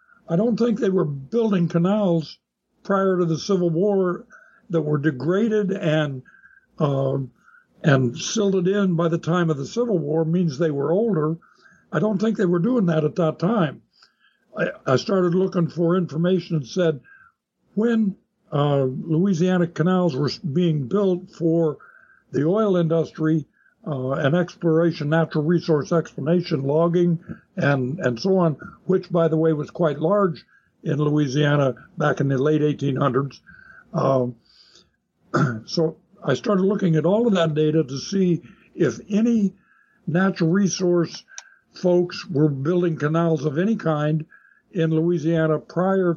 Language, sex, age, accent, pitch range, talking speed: English, male, 60-79, American, 155-190 Hz, 145 wpm